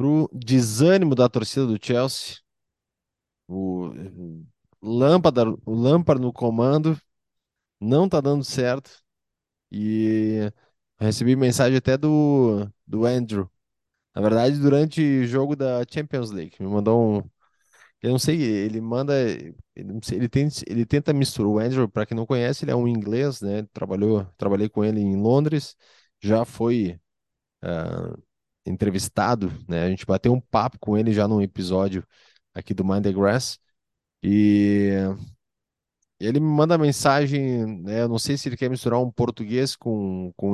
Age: 20-39